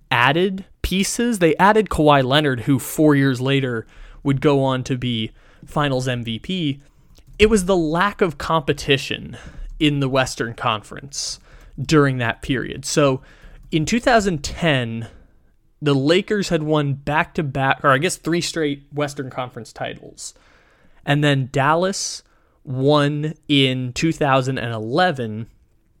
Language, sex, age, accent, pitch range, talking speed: English, male, 20-39, American, 130-165 Hz, 120 wpm